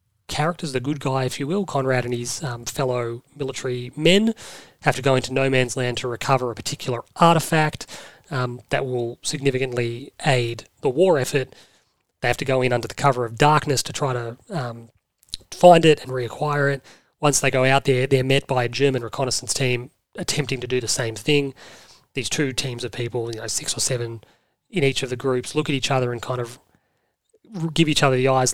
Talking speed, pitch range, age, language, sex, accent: 205 wpm, 125-150 Hz, 30-49, English, male, Australian